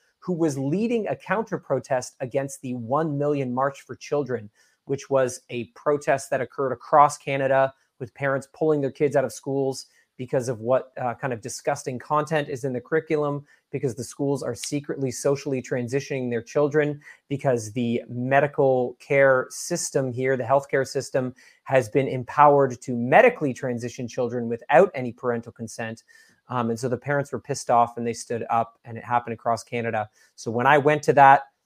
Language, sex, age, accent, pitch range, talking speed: English, male, 30-49, American, 120-140 Hz, 175 wpm